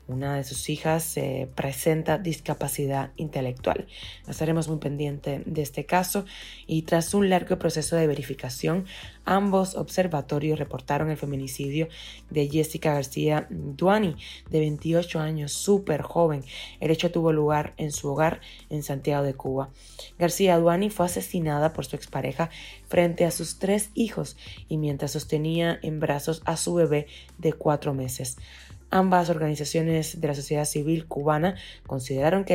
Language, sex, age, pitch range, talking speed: Spanish, female, 20-39, 140-170 Hz, 145 wpm